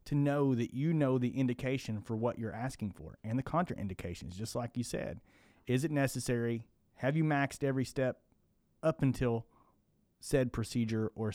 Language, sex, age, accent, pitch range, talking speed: English, male, 30-49, American, 115-135 Hz, 170 wpm